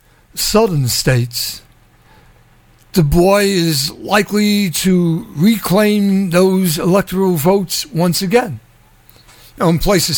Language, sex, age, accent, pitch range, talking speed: English, male, 60-79, American, 155-240 Hz, 100 wpm